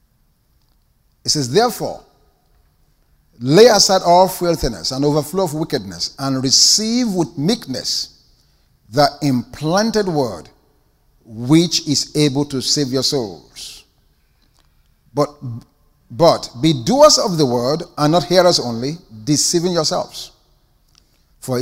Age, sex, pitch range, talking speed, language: 50-69, male, 135-185 Hz, 110 wpm, English